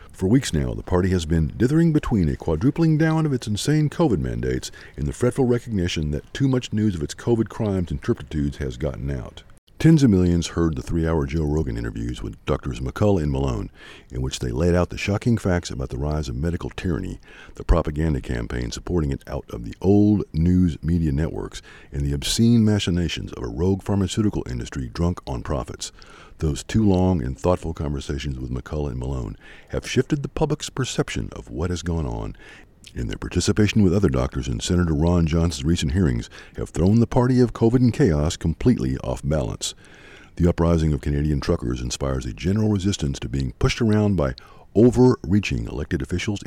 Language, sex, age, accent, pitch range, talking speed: English, male, 50-69, American, 75-105 Hz, 190 wpm